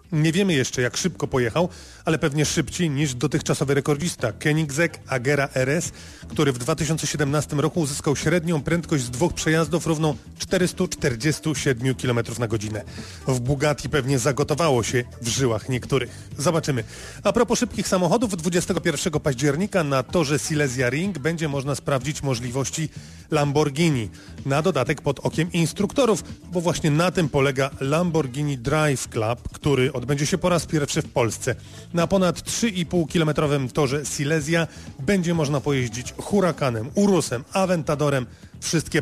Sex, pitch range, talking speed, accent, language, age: male, 130-170 Hz, 135 wpm, native, Polish, 30-49